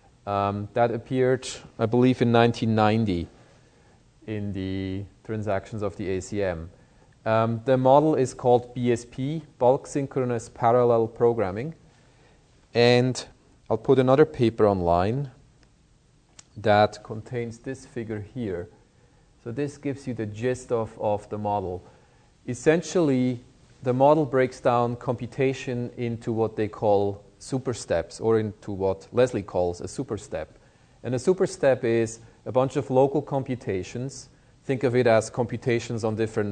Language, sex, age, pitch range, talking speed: English, male, 40-59, 110-130 Hz, 135 wpm